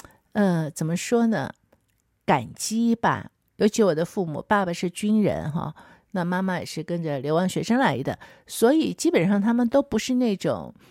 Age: 50-69